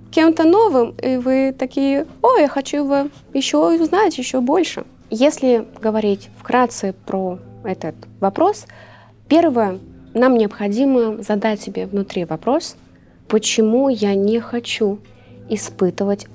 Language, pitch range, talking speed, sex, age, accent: Russian, 200-255 Hz, 115 wpm, female, 20-39, native